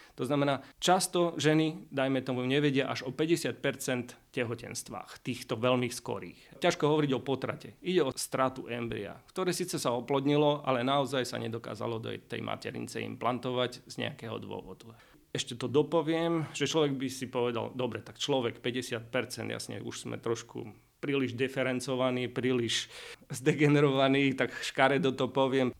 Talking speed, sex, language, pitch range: 140 wpm, male, Slovak, 120-140 Hz